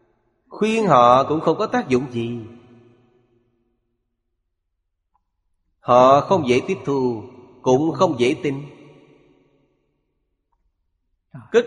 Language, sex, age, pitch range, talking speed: Vietnamese, male, 30-49, 120-160 Hz, 95 wpm